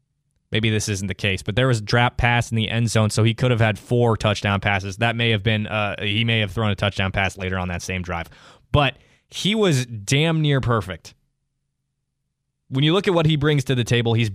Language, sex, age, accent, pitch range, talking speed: English, male, 20-39, American, 110-135 Hz, 240 wpm